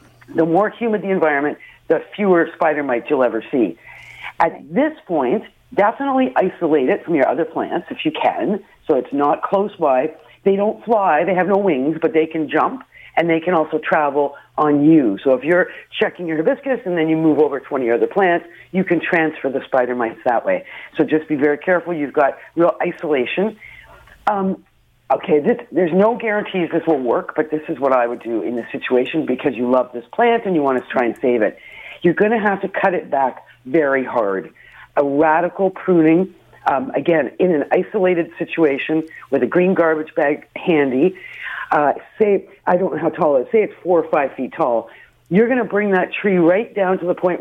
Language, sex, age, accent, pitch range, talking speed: English, female, 50-69, American, 150-190 Hz, 205 wpm